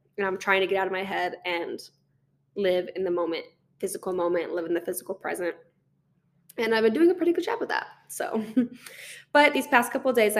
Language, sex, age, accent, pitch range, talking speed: English, female, 10-29, American, 185-235 Hz, 220 wpm